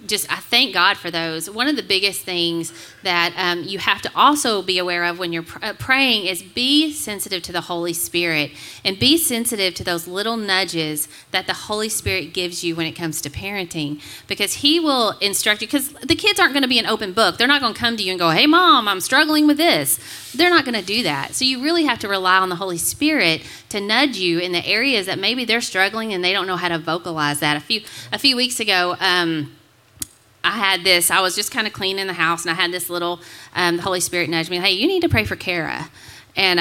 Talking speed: 245 wpm